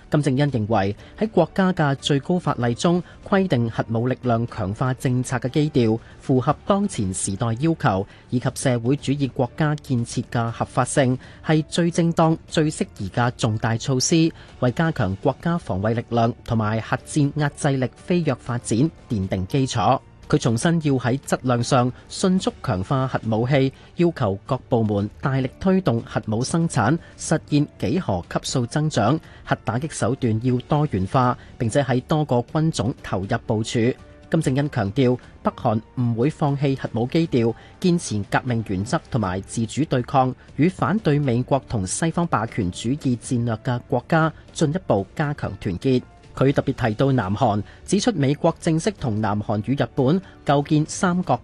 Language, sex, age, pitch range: Chinese, male, 30-49, 115-150 Hz